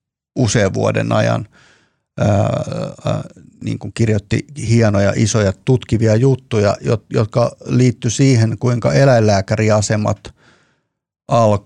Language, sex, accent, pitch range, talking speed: Finnish, male, native, 105-130 Hz, 95 wpm